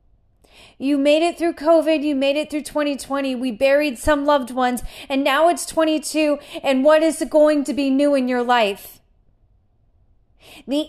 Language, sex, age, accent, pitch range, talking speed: English, female, 30-49, American, 220-290 Hz, 165 wpm